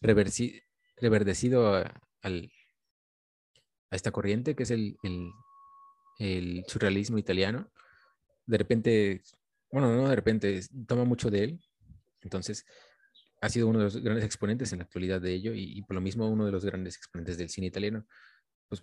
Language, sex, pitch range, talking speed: Spanish, male, 95-115 Hz, 155 wpm